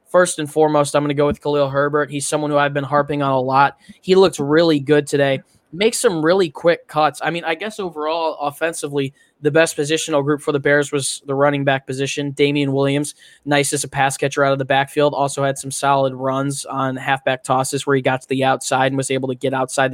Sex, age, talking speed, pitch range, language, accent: male, 10-29, 235 wpm, 135-155 Hz, English, American